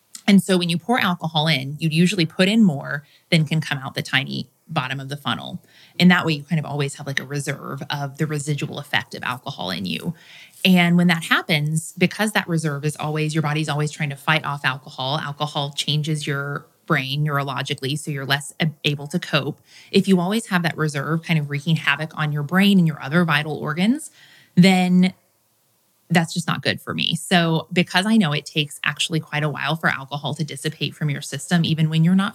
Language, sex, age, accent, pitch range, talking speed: English, female, 30-49, American, 145-175 Hz, 215 wpm